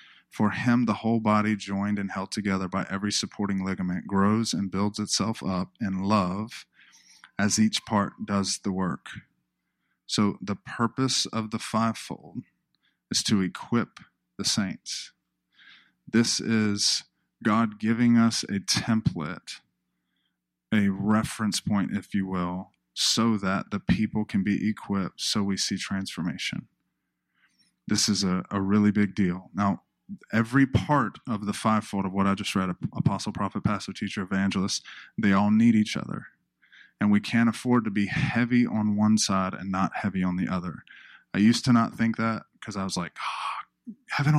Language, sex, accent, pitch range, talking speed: English, male, American, 95-115 Hz, 155 wpm